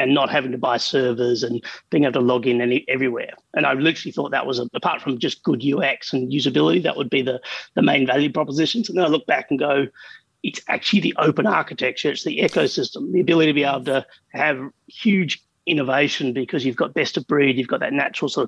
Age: 30-49